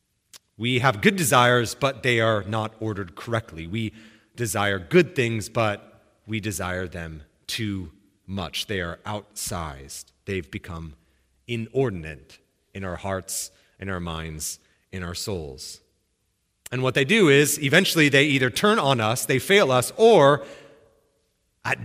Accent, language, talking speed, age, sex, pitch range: American, English, 140 wpm, 30-49, male, 95-145 Hz